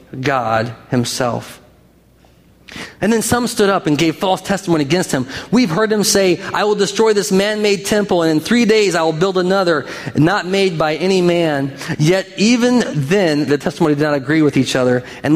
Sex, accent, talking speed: male, American, 190 wpm